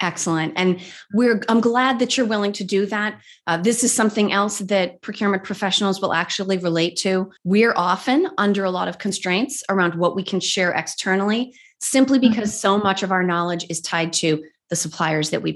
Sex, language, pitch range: female, English, 170-215 Hz